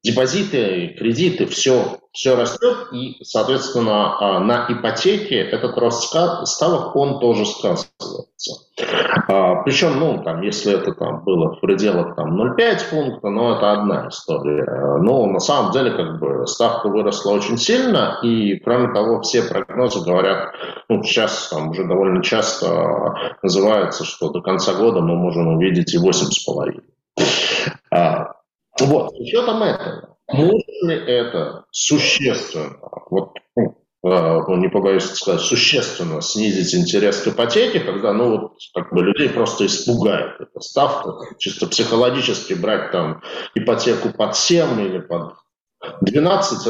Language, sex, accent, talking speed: Russian, male, native, 130 wpm